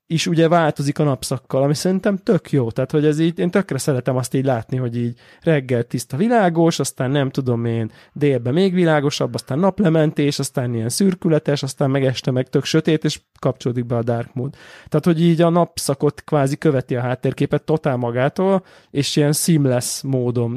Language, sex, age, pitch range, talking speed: Hungarian, male, 20-39, 130-155 Hz, 185 wpm